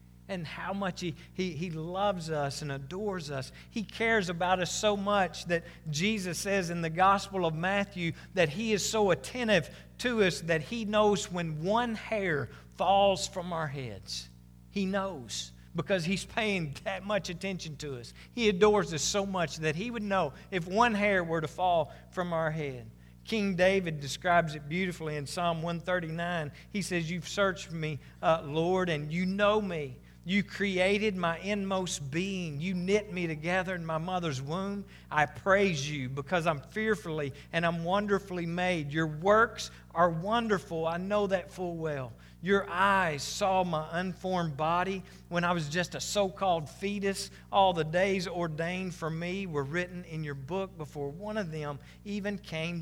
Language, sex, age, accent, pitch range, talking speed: English, male, 50-69, American, 160-195 Hz, 170 wpm